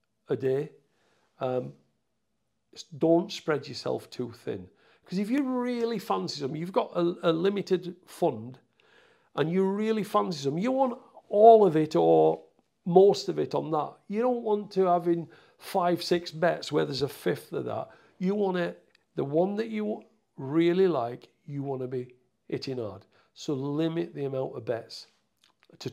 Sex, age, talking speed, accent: male, 50-69, 170 wpm, British